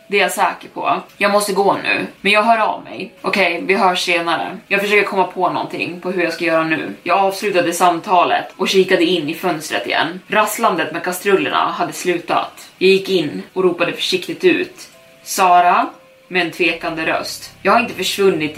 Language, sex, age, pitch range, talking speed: Swedish, female, 20-39, 175-200 Hz, 195 wpm